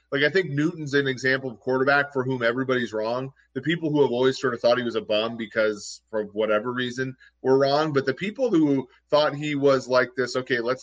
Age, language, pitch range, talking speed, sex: 30-49, English, 115-140 Hz, 225 wpm, male